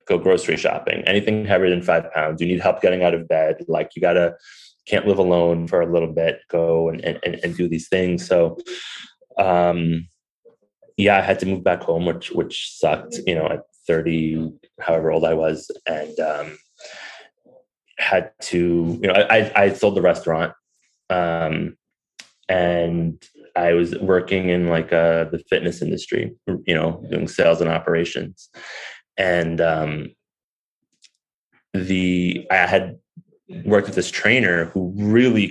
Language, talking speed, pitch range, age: English, 155 wpm, 85-100 Hz, 20-39